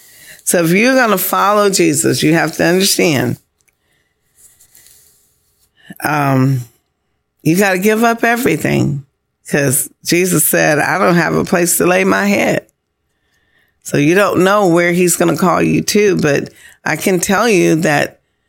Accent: American